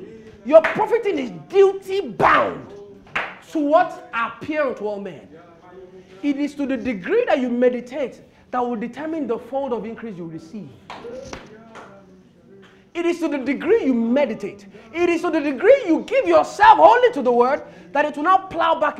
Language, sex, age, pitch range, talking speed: English, male, 30-49, 210-340 Hz, 165 wpm